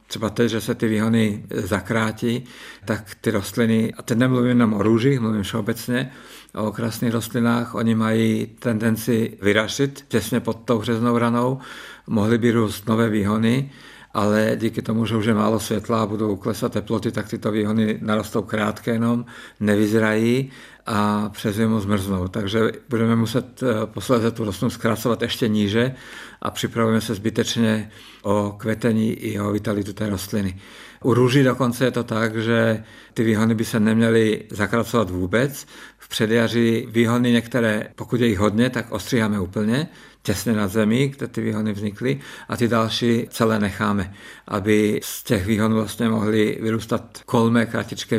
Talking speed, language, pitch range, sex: 155 wpm, Czech, 105-120 Hz, male